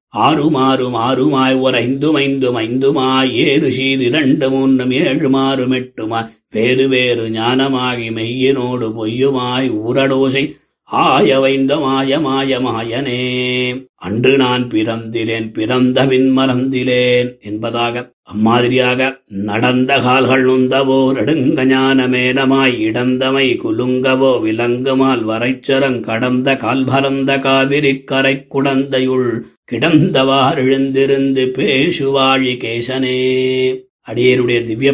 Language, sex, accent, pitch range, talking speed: Tamil, male, native, 120-135 Hz, 50 wpm